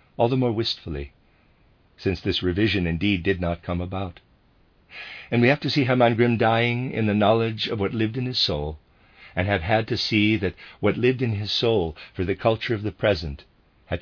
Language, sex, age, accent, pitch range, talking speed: English, male, 50-69, American, 85-110 Hz, 200 wpm